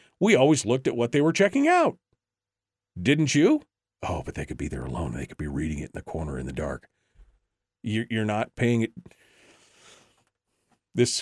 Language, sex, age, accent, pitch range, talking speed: English, male, 40-59, American, 100-165 Hz, 180 wpm